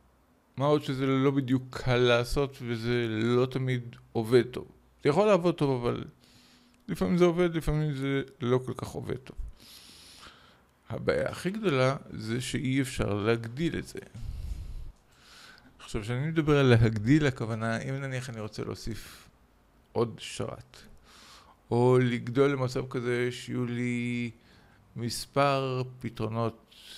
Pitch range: 115-135 Hz